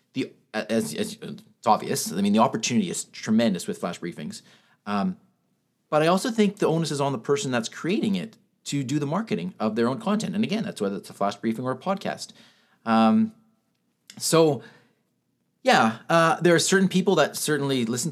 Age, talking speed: 30-49, 190 wpm